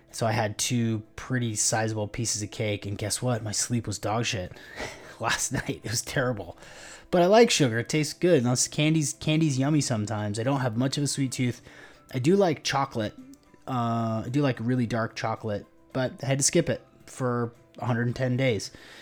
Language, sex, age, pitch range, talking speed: English, male, 30-49, 115-140 Hz, 195 wpm